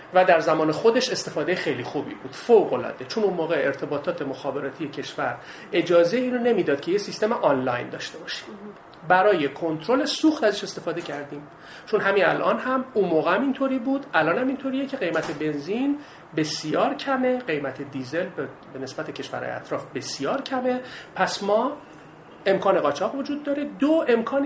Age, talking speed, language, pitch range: 40-59, 155 wpm, Persian, 170-250 Hz